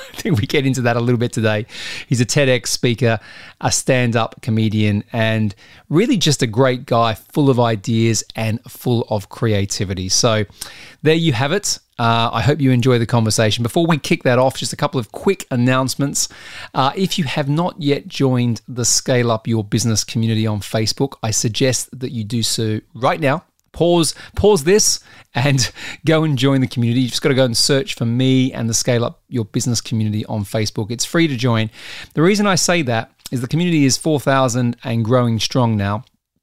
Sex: male